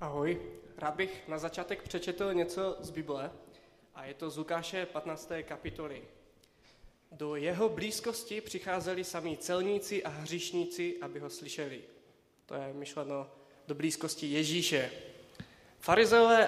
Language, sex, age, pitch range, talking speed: Czech, male, 20-39, 155-185 Hz, 125 wpm